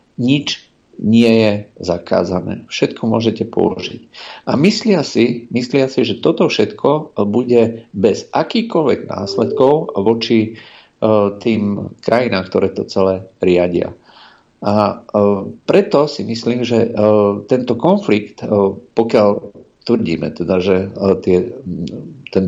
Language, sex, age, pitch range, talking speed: Slovak, male, 50-69, 100-120 Hz, 115 wpm